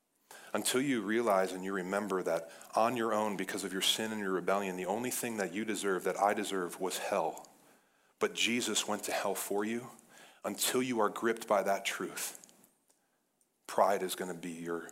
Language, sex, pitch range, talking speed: English, male, 95-110 Hz, 195 wpm